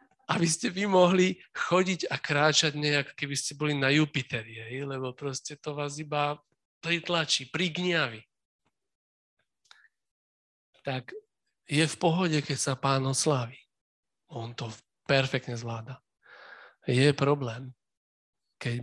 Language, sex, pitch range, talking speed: Slovak, male, 120-150 Hz, 110 wpm